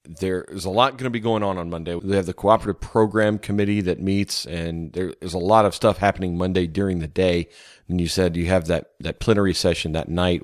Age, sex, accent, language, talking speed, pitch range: 40-59, male, American, English, 240 wpm, 85-100 Hz